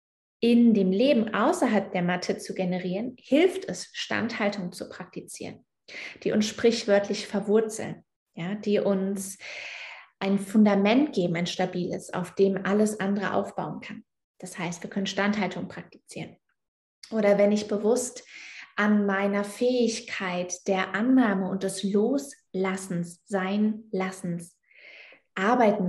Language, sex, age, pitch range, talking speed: German, female, 20-39, 190-230 Hz, 120 wpm